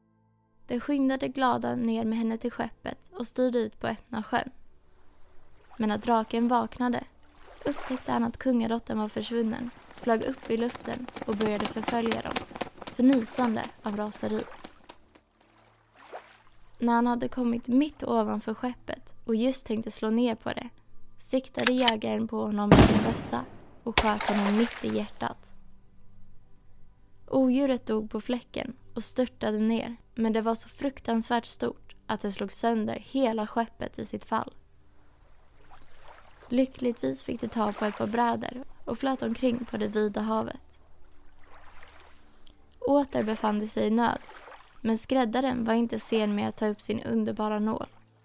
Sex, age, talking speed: female, 20-39, 145 wpm